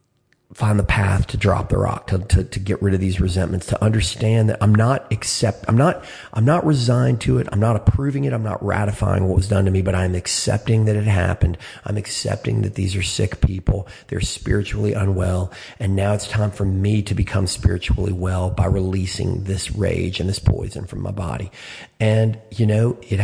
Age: 40-59